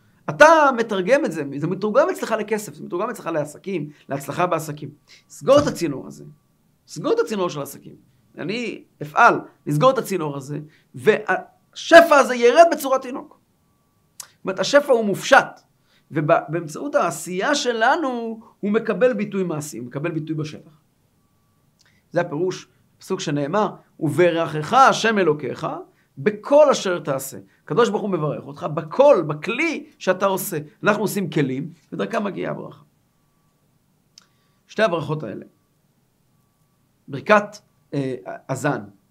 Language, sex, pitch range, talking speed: Hebrew, male, 155-225 Hz, 120 wpm